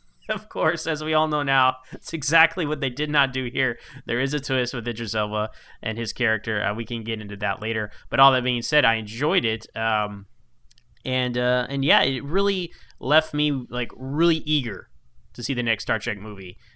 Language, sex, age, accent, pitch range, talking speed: English, male, 10-29, American, 105-130 Hz, 210 wpm